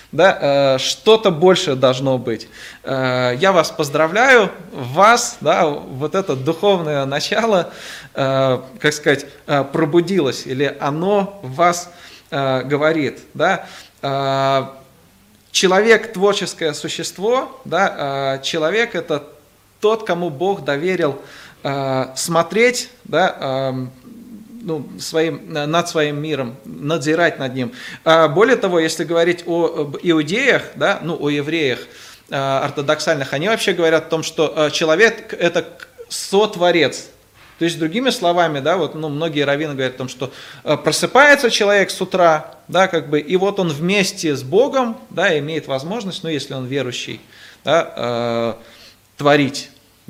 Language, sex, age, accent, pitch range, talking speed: Russian, male, 20-39, native, 140-185 Hz, 130 wpm